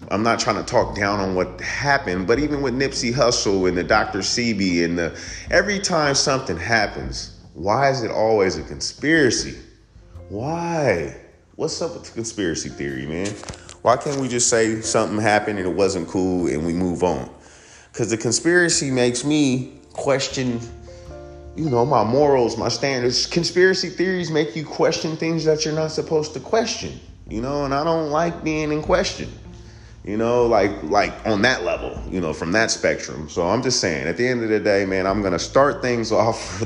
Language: English